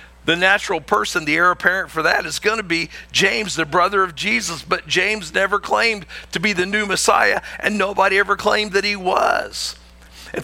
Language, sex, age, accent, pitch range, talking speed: English, male, 50-69, American, 150-210 Hz, 195 wpm